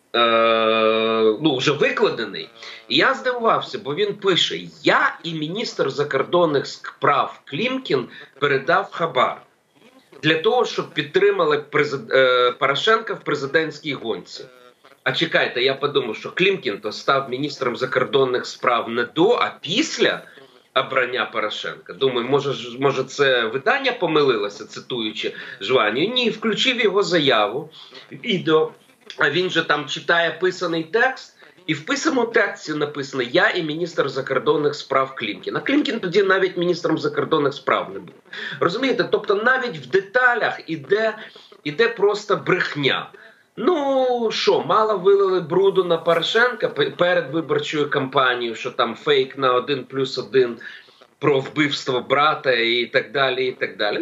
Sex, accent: male, native